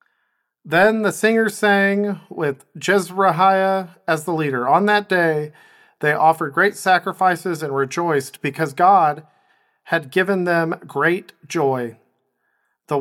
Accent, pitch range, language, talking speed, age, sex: American, 155-195 Hz, English, 120 wpm, 40-59, male